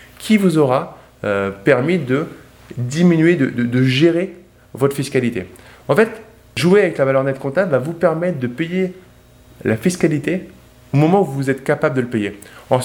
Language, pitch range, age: French, 125-170 Hz, 20-39